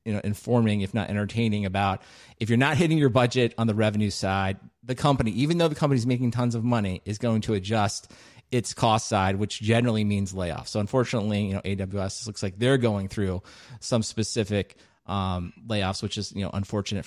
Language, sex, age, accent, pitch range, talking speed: English, male, 30-49, American, 105-130 Hz, 200 wpm